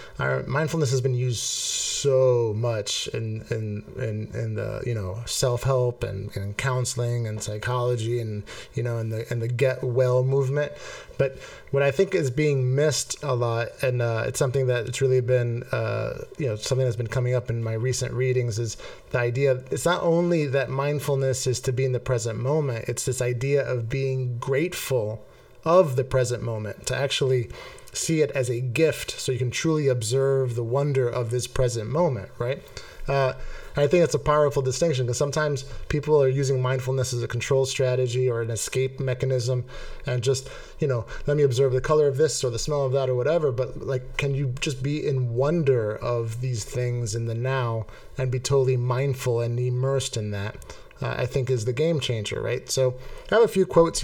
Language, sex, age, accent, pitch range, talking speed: English, male, 20-39, American, 120-140 Hz, 200 wpm